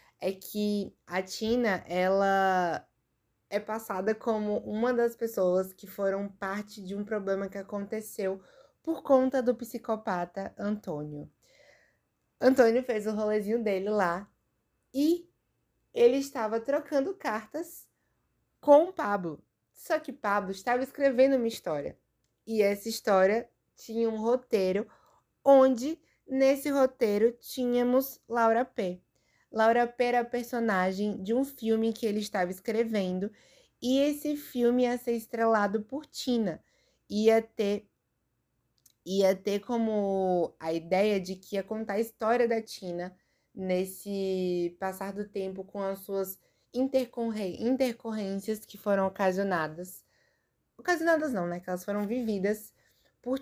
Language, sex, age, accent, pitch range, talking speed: Portuguese, female, 20-39, Brazilian, 190-240 Hz, 120 wpm